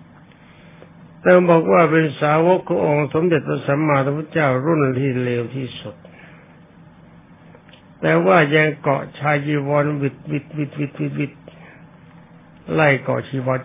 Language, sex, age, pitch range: Thai, male, 60-79, 125-160 Hz